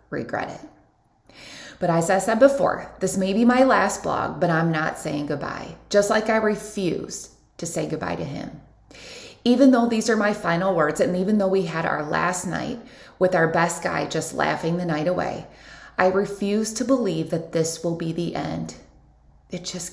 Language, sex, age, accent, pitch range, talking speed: English, female, 20-39, American, 150-205 Hz, 190 wpm